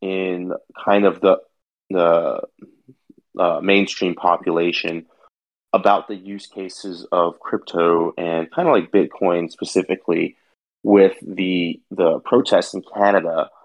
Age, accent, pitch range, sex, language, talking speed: 30-49, American, 85-95 Hz, male, English, 115 wpm